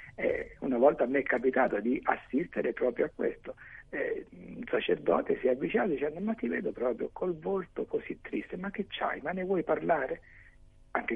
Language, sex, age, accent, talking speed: Italian, male, 60-79, native, 190 wpm